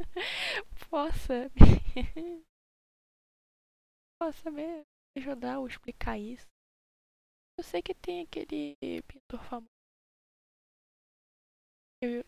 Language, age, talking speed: Portuguese, 10-29, 80 wpm